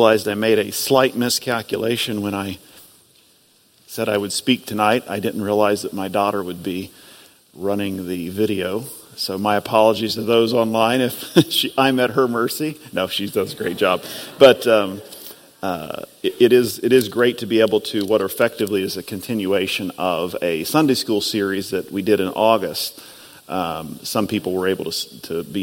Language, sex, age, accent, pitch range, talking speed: English, male, 40-59, American, 95-115 Hz, 185 wpm